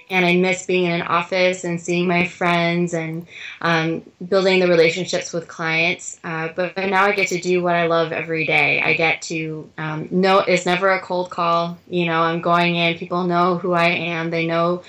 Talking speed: 210 wpm